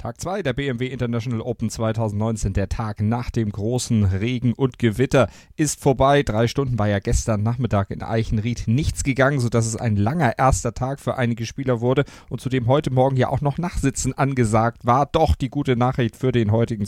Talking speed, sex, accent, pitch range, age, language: 190 wpm, male, German, 105-125 Hz, 40-59, German